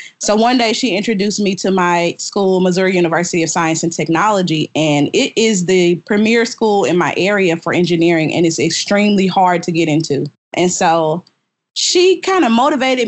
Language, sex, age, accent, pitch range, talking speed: English, female, 20-39, American, 170-215 Hz, 180 wpm